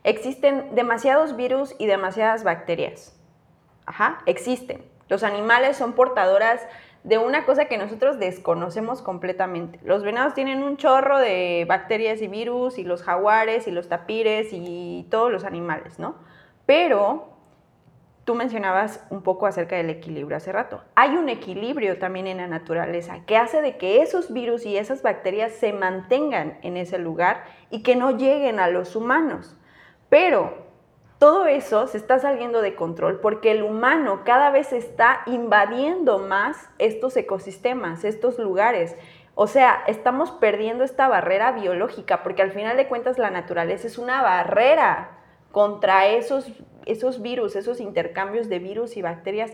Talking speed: 150 wpm